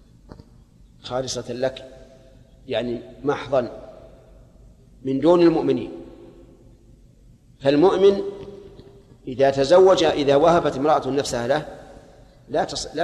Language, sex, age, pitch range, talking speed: Arabic, male, 40-59, 130-150 Hz, 75 wpm